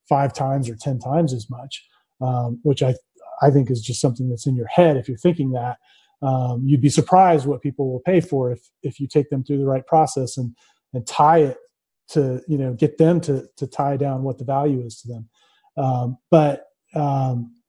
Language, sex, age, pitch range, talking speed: English, male, 30-49, 135-160 Hz, 215 wpm